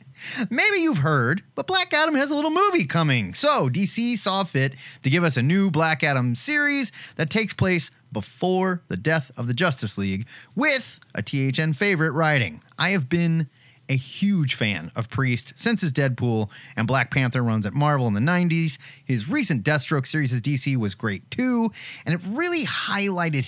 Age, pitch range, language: 30-49, 120-165 Hz, English